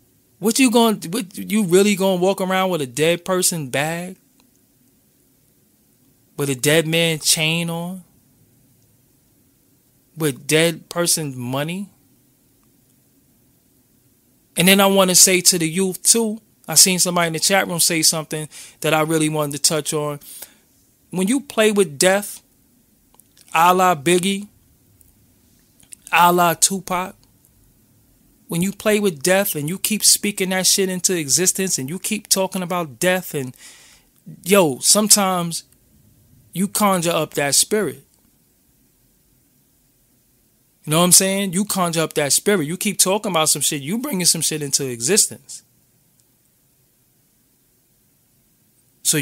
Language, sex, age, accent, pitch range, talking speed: English, male, 20-39, American, 135-185 Hz, 135 wpm